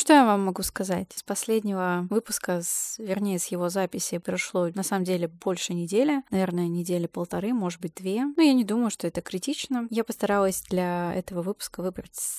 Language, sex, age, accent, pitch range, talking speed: Russian, female, 20-39, native, 180-215 Hz, 180 wpm